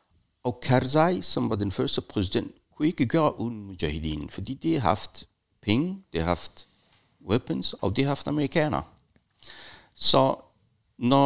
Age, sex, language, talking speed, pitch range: 60-79, male, Danish, 150 wpm, 90-130 Hz